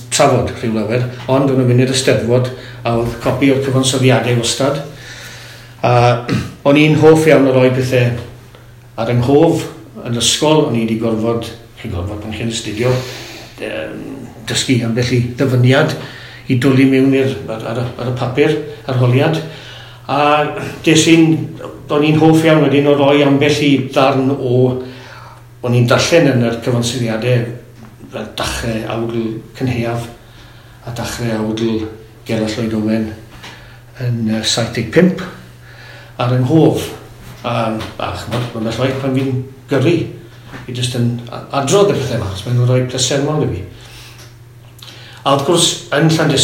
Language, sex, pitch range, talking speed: English, male, 115-135 Hz, 130 wpm